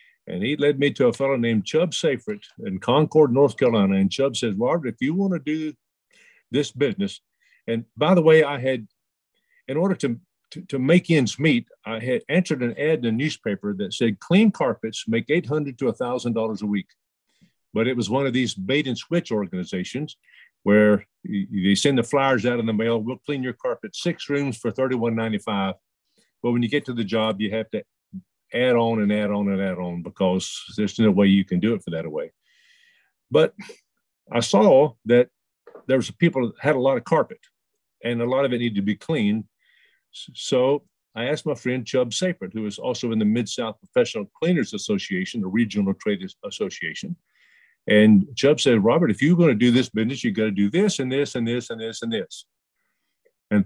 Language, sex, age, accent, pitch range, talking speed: English, male, 50-69, American, 110-165 Hz, 200 wpm